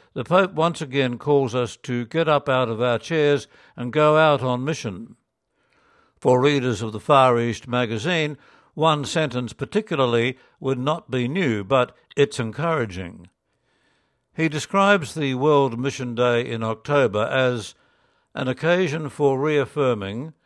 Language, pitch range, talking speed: English, 120-150 Hz, 140 wpm